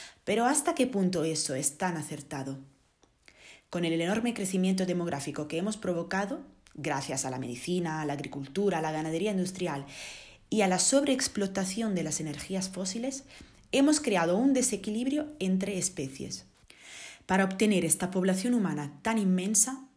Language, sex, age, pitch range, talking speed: Spanish, female, 20-39, 160-220 Hz, 145 wpm